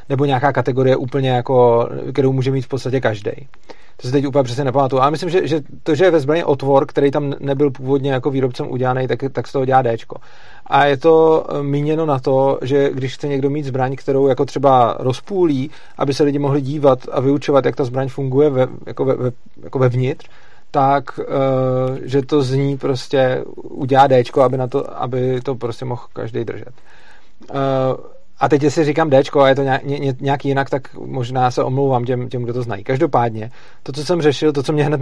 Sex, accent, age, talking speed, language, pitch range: male, native, 40-59, 200 wpm, Czech, 130-145 Hz